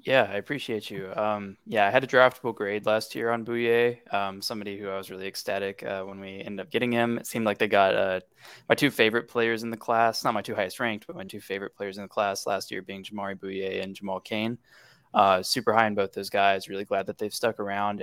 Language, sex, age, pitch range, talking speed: English, male, 20-39, 100-115 Hz, 255 wpm